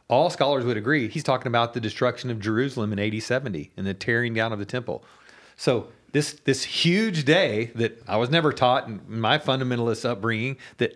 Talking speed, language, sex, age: 190 wpm, English, male, 40-59